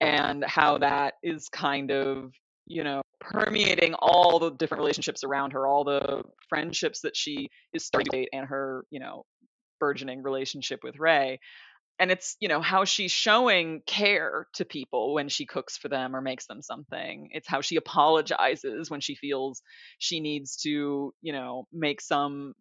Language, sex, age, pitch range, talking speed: English, female, 20-39, 145-190 Hz, 175 wpm